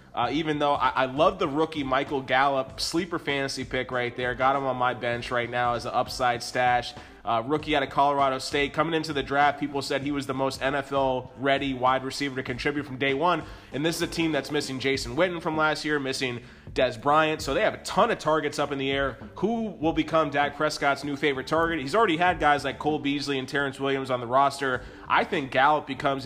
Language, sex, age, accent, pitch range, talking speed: English, male, 20-39, American, 130-155 Hz, 235 wpm